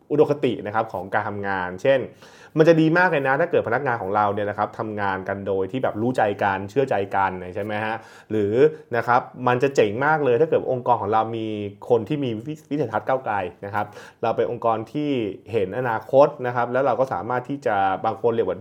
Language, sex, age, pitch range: Thai, male, 20-39, 110-160 Hz